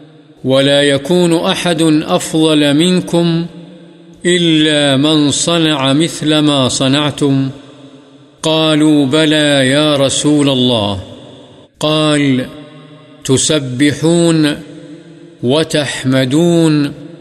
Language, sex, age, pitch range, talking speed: Urdu, male, 50-69, 135-155 Hz, 65 wpm